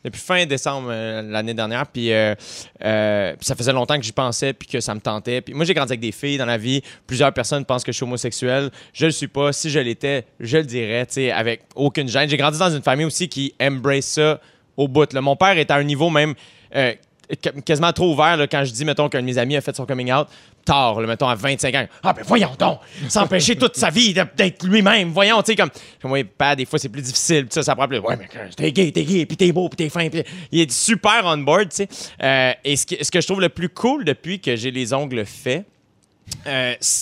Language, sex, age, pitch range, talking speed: French, male, 30-49, 125-160 Hz, 255 wpm